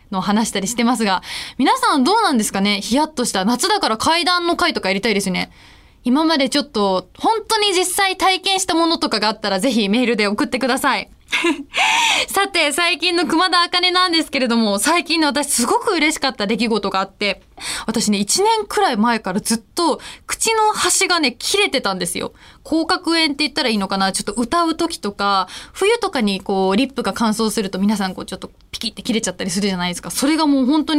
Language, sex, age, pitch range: Japanese, female, 20-39, 200-325 Hz